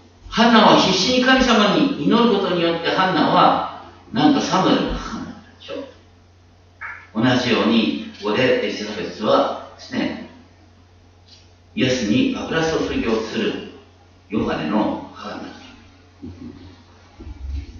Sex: male